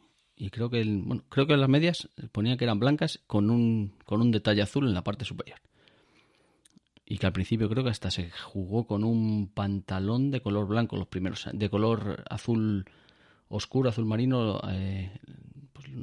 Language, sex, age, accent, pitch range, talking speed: Spanish, male, 30-49, Spanish, 100-125 Hz, 180 wpm